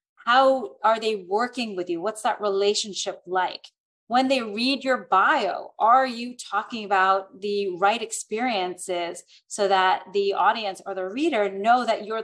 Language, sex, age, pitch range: English, female, 30-49, 185-235 Hz